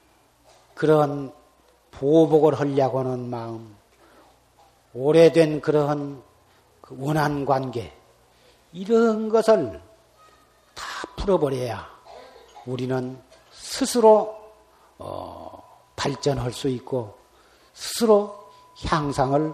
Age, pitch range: 40-59, 140-185 Hz